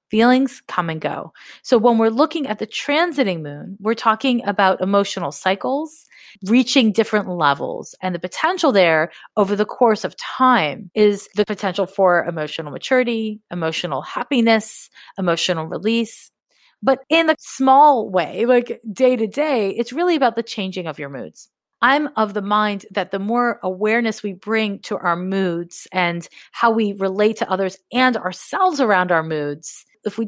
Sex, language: female, English